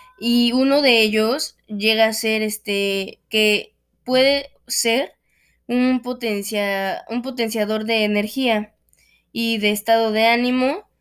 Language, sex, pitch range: Spanish, female, 210-245 Hz